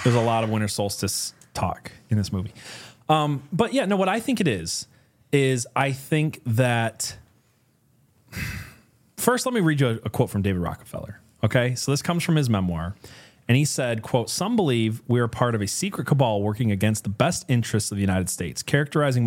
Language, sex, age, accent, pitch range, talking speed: English, male, 30-49, American, 110-155 Hz, 195 wpm